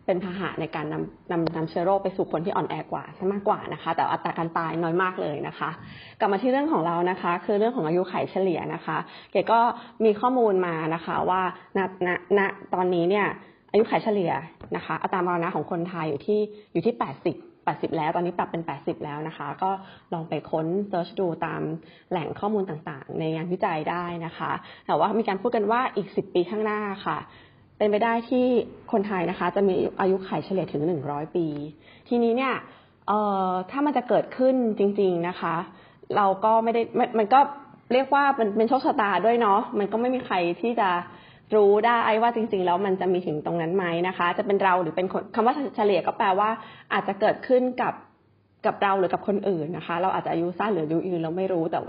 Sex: female